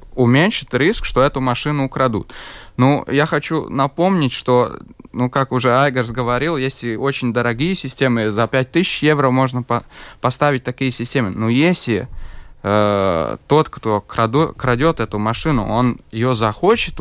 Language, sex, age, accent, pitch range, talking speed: Russian, male, 20-39, native, 115-150 Hz, 135 wpm